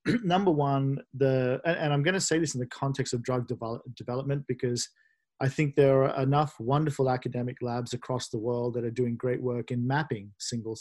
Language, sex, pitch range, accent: English, male, 120-145 Hz, Australian